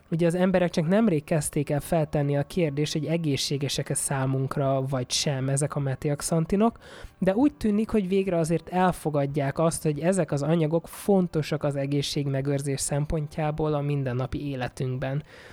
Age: 20-39